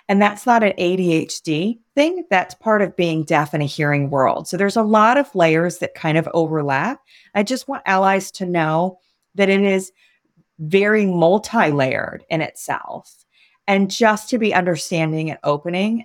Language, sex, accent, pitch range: English, female, American, 155-200 Hz